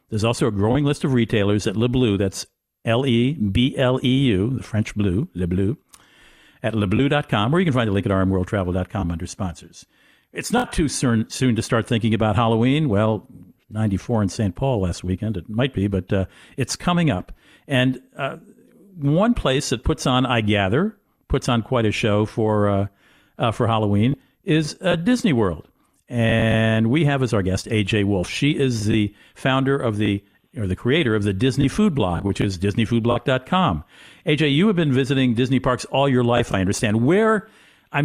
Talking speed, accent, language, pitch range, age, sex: 180 wpm, American, English, 105-150 Hz, 50-69, male